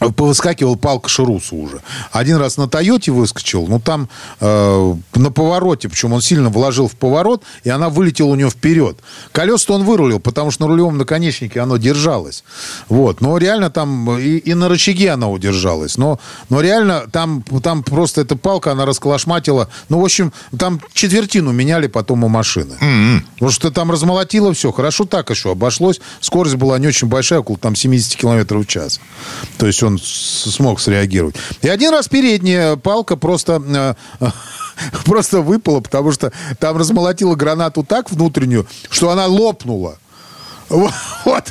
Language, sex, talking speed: Russian, male, 160 wpm